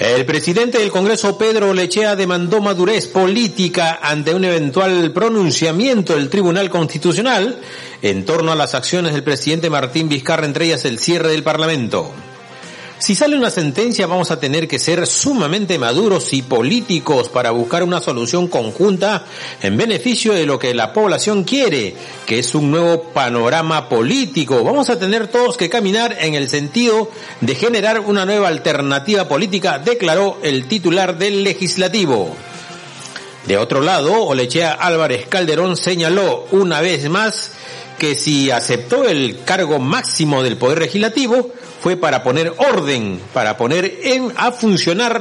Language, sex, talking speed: Spanish, male, 145 wpm